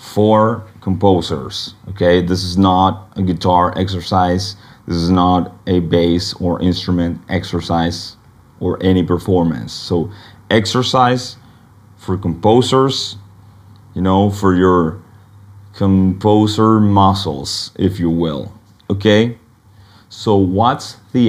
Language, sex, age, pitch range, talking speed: English, male, 30-49, 95-105 Hz, 105 wpm